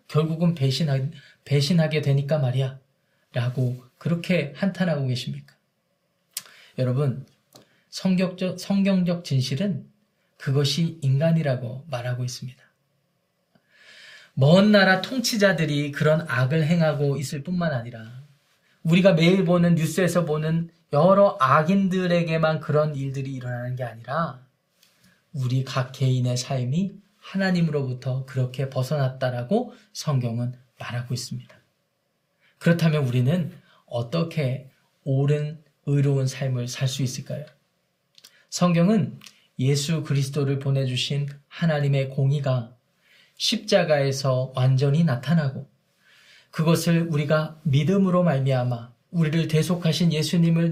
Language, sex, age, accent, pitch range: Korean, male, 20-39, native, 135-175 Hz